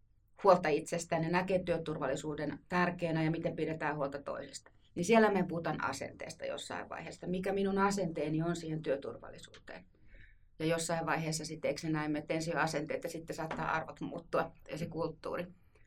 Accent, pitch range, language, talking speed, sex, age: native, 150-175 Hz, Finnish, 150 wpm, female, 30-49